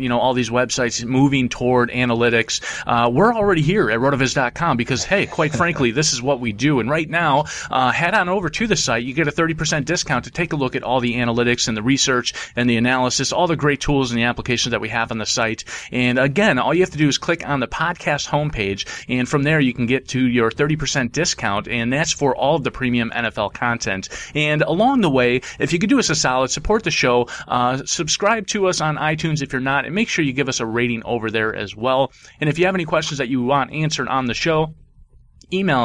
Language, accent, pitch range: English, American, 120-160 Hz